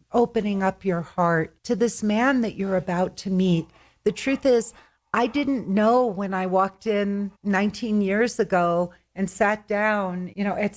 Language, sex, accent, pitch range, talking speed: English, female, American, 185-215 Hz, 175 wpm